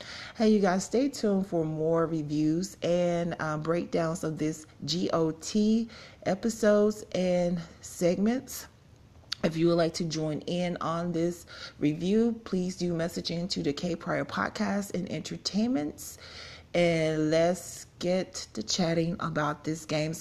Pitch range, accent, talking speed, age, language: 150-175 Hz, American, 135 wpm, 30-49, English